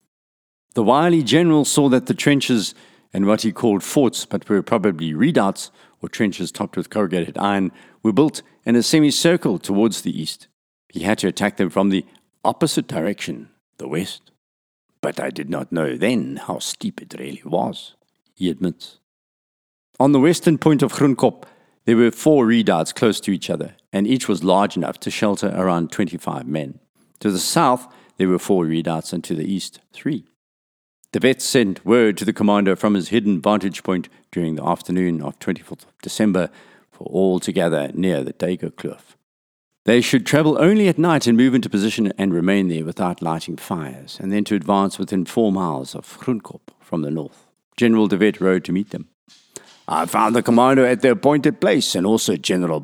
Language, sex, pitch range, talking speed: English, male, 90-125 Hz, 185 wpm